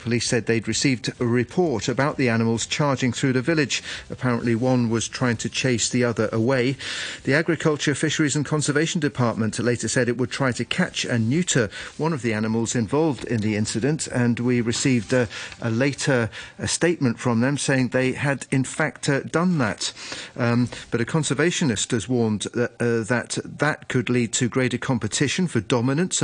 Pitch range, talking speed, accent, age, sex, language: 115-140 Hz, 180 wpm, British, 40-59, male, English